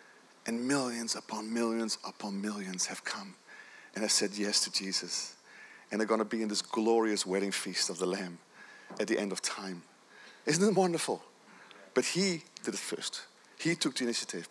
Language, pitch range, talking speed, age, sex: English, 115-185 Hz, 180 wpm, 40-59, male